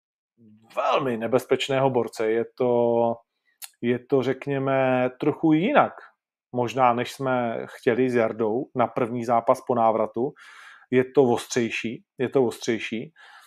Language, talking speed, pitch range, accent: Czech, 120 wpm, 120-135 Hz, native